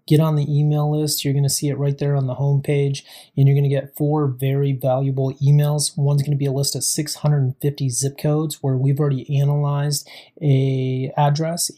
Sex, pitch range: male, 140-150 Hz